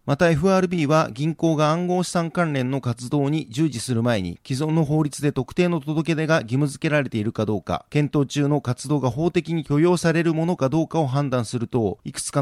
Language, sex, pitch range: Japanese, male, 125-155 Hz